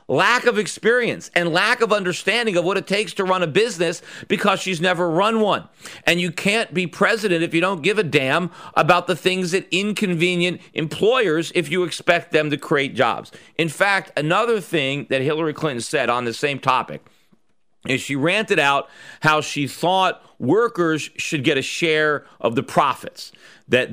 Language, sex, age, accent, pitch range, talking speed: English, male, 40-59, American, 150-195 Hz, 180 wpm